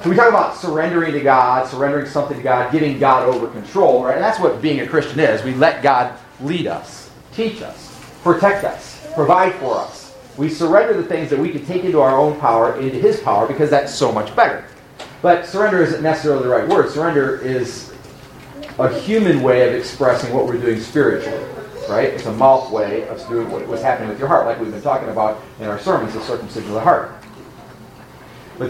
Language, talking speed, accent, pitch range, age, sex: English, 205 wpm, American, 135-180 Hz, 40-59, male